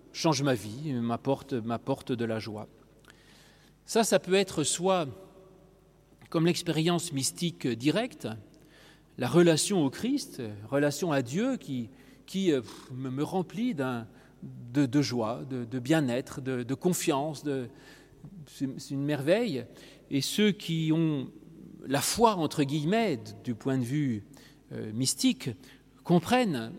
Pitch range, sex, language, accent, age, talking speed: 130-175 Hz, male, French, French, 40-59, 130 wpm